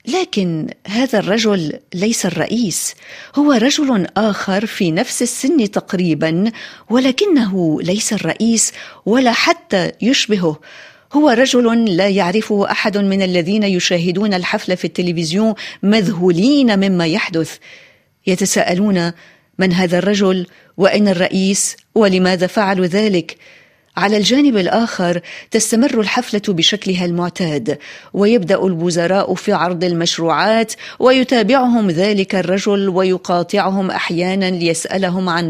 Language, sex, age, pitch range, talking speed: Arabic, female, 40-59, 180-220 Hz, 100 wpm